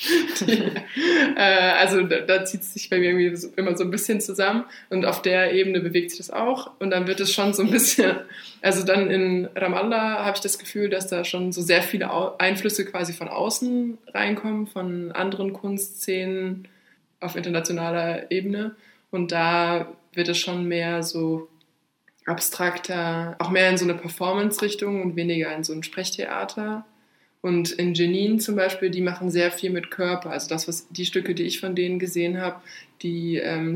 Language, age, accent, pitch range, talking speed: German, 20-39, German, 170-195 Hz, 180 wpm